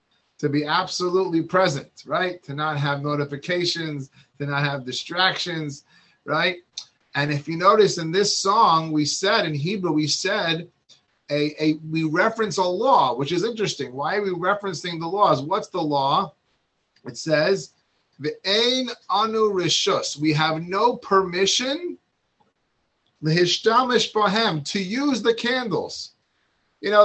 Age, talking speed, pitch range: 30-49, 130 wpm, 155-215 Hz